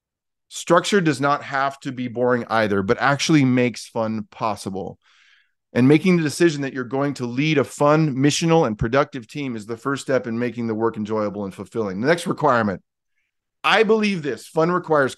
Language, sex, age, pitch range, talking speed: English, male, 30-49, 120-150 Hz, 185 wpm